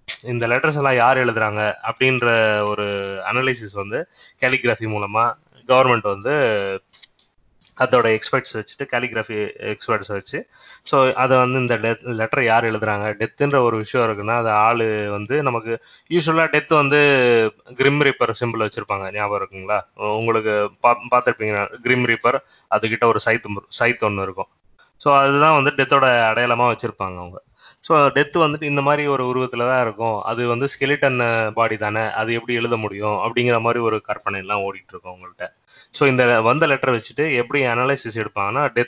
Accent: native